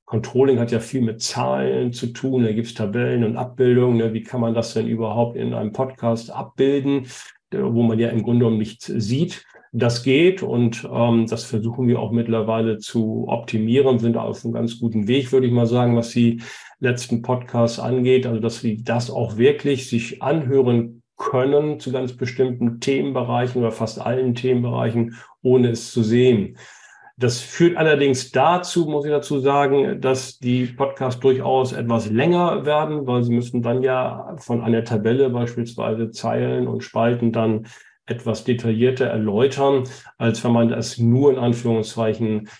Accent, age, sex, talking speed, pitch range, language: German, 50-69, male, 165 wpm, 115-135 Hz, German